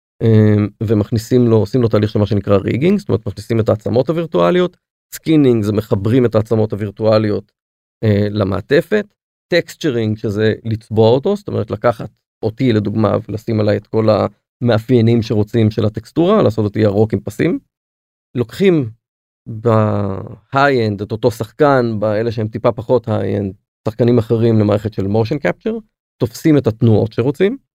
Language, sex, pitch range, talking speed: Hebrew, male, 105-130 Hz, 145 wpm